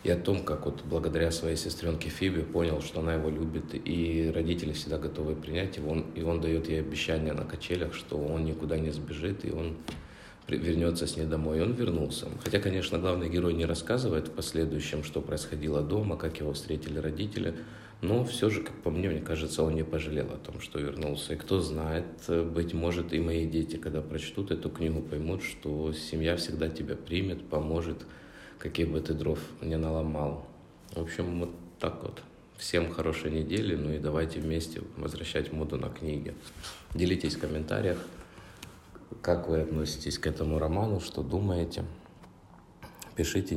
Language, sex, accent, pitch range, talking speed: Russian, male, native, 80-85 Hz, 170 wpm